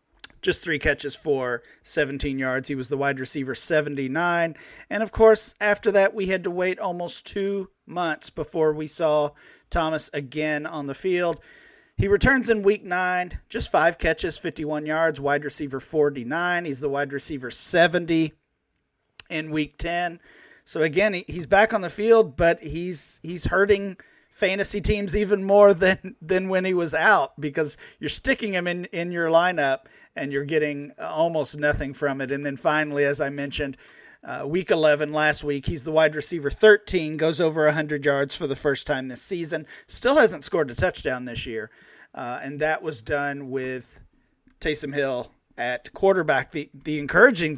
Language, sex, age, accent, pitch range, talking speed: English, male, 40-59, American, 145-180 Hz, 170 wpm